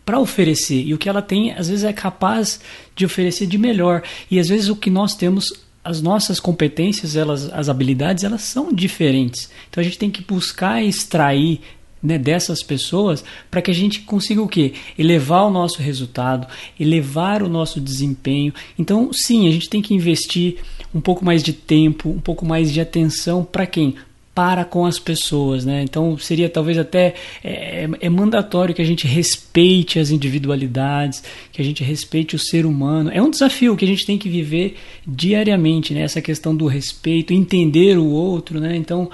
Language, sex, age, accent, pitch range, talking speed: Portuguese, male, 20-39, Brazilian, 155-195 Hz, 185 wpm